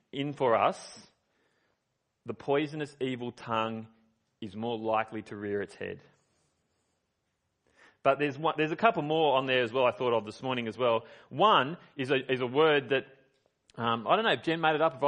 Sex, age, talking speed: male, 30-49, 190 wpm